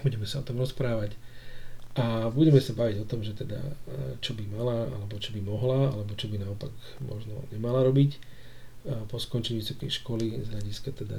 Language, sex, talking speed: Slovak, male, 180 wpm